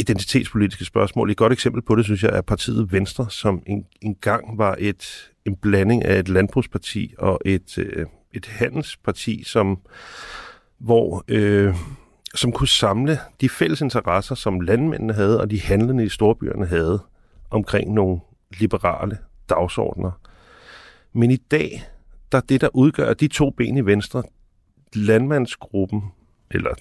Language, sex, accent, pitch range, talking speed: Danish, male, native, 100-130 Hz, 140 wpm